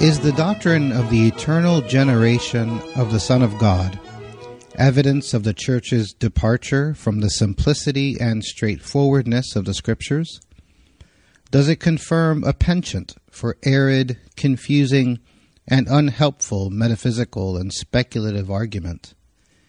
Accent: American